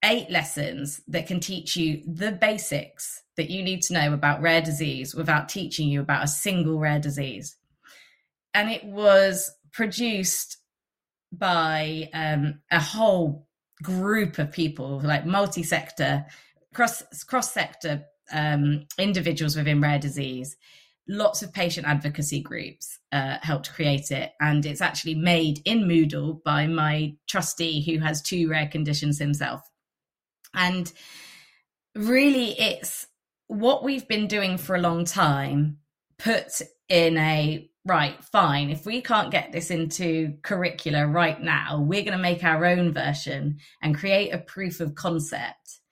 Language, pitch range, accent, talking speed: English, 150-180 Hz, British, 135 wpm